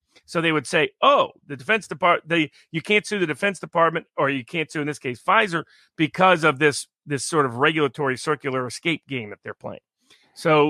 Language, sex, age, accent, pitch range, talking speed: English, male, 40-59, American, 135-165 Hz, 200 wpm